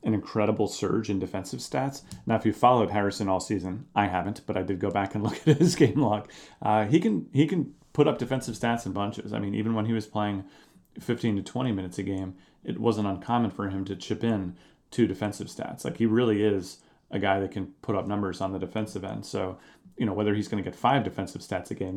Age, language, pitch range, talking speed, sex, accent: 30-49, English, 95-115 Hz, 245 wpm, male, American